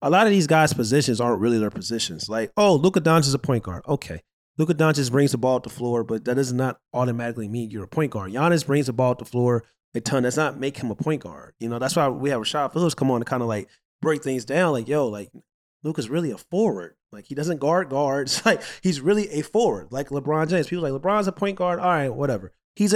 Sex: male